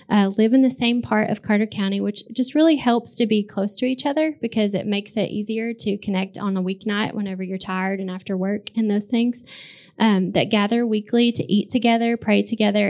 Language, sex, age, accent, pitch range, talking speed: English, female, 10-29, American, 195-225 Hz, 220 wpm